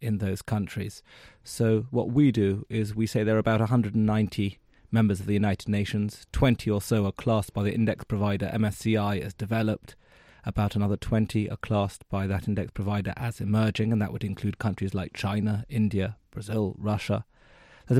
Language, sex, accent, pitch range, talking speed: English, male, British, 100-115 Hz, 175 wpm